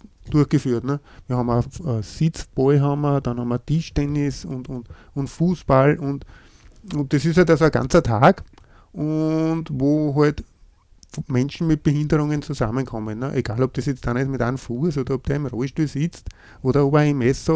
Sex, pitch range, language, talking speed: male, 125-150 Hz, German, 190 wpm